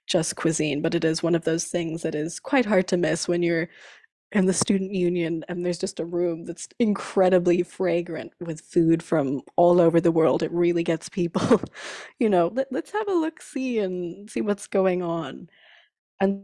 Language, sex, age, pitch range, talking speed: English, female, 20-39, 170-195 Hz, 190 wpm